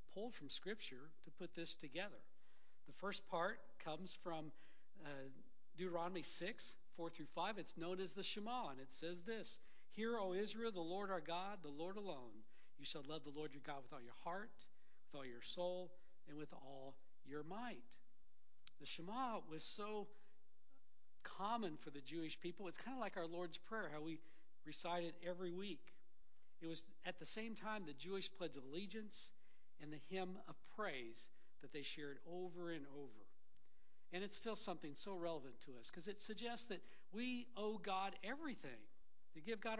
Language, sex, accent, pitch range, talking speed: English, male, American, 150-200 Hz, 180 wpm